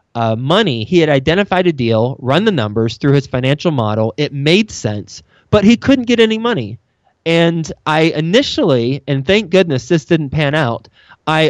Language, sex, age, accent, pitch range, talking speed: English, male, 20-39, American, 125-165 Hz, 175 wpm